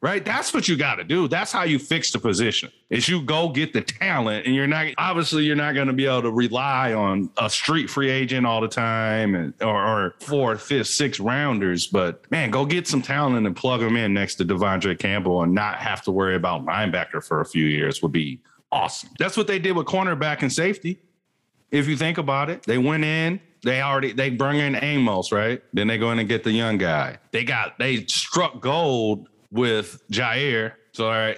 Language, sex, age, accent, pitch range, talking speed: English, male, 40-59, American, 110-140 Hz, 220 wpm